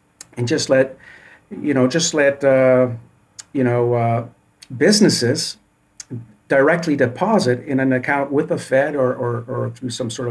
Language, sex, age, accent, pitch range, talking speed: English, male, 50-69, American, 120-140 Hz, 150 wpm